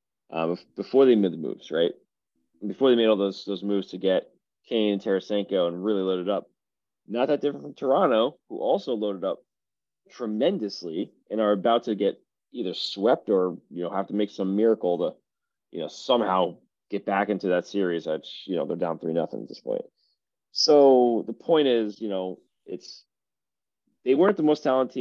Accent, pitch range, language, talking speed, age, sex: American, 95-115 Hz, English, 195 wpm, 30-49, male